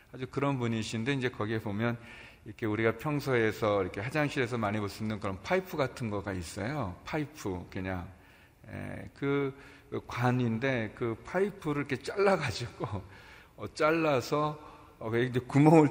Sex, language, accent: male, Korean, native